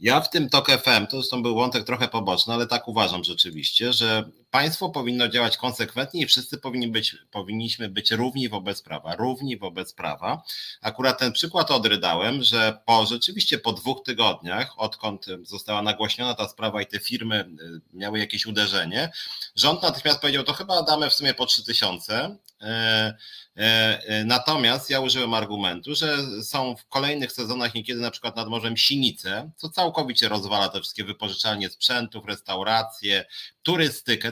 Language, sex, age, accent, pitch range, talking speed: Polish, male, 30-49, native, 105-125 Hz, 155 wpm